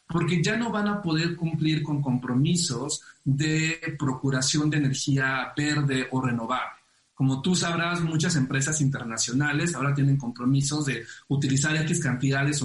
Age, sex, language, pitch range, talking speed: 40-59, male, Spanish, 135-170 Hz, 140 wpm